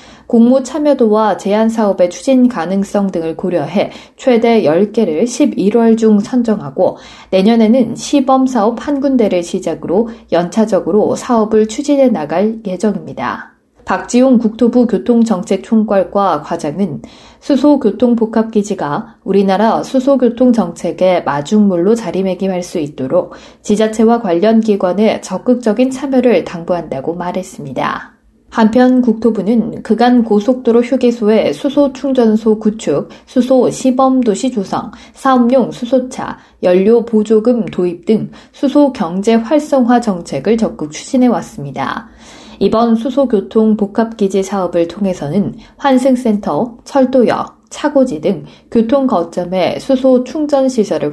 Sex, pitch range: female, 195-250 Hz